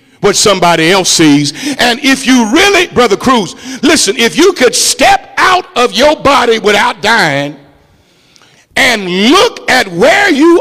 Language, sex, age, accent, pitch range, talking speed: English, male, 50-69, American, 225-300 Hz, 145 wpm